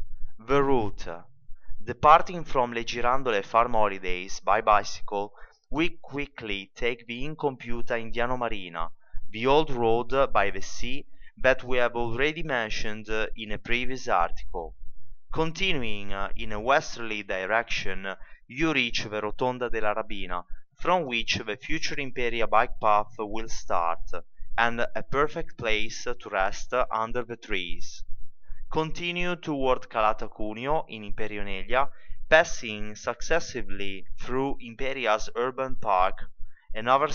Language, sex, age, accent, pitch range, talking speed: English, male, 20-39, Italian, 110-135 Hz, 120 wpm